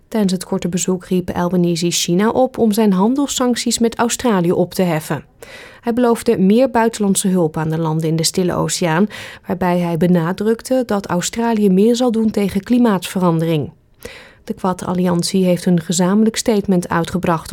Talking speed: 155 wpm